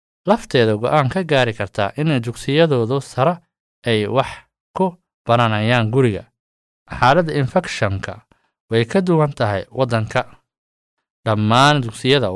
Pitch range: 110-135 Hz